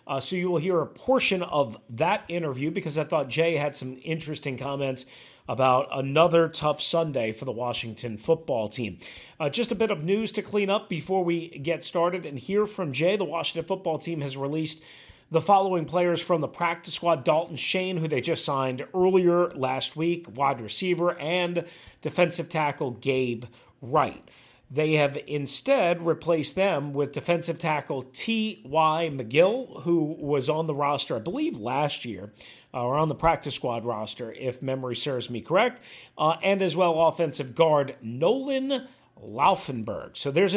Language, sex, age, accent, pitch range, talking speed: English, male, 40-59, American, 130-180 Hz, 170 wpm